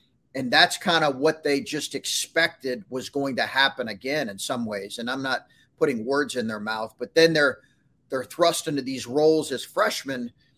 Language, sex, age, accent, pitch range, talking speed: English, male, 40-59, American, 125-160 Hz, 195 wpm